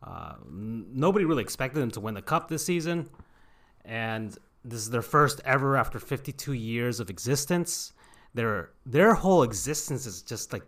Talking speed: 165 wpm